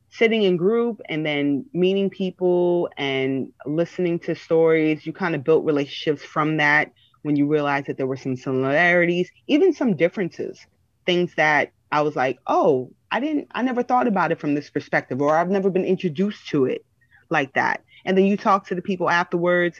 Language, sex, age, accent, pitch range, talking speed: English, female, 30-49, American, 140-175 Hz, 190 wpm